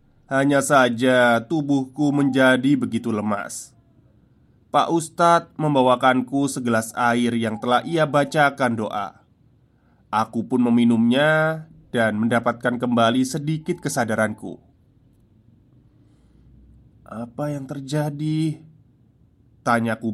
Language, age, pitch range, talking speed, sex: Indonesian, 20-39, 115-135 Hz, 85 wpm, male